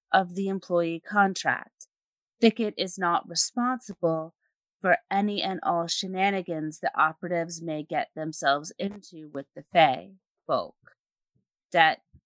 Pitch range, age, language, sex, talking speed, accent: 170-215 Hz, 30-49, English, female, 115 wpm, American